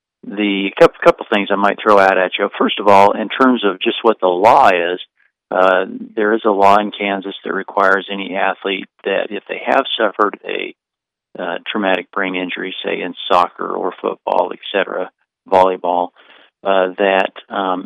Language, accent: English, American